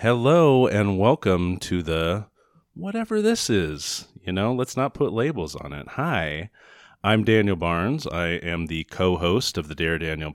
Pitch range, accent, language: 90-125 Hz, American, English